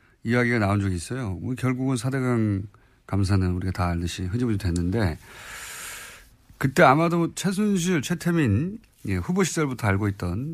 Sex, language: male, Korean